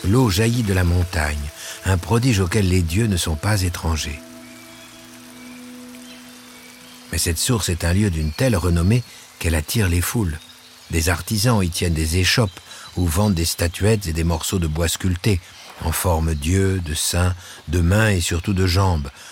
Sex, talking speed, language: male, 170 wpm, French